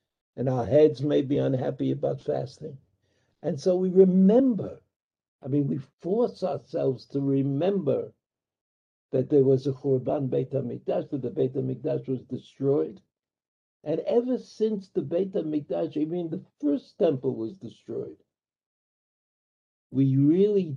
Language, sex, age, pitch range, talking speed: English, male, 60-79, 140-185 Hz, 135 wpm